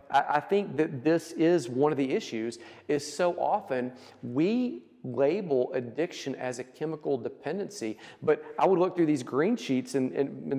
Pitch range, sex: 120-165 Hz, male